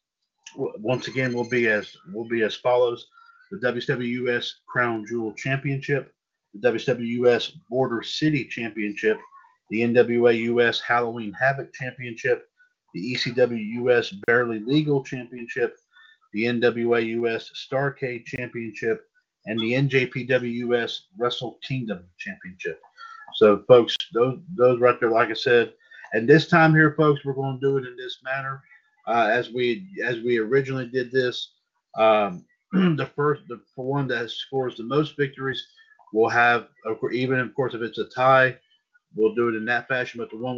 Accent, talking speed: American, 145 wpm